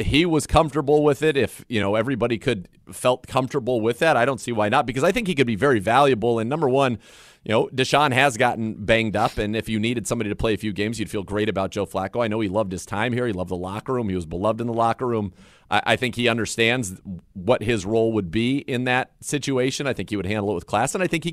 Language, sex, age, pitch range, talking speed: English, male, 30-49, 105-130 Hz, 275 wpm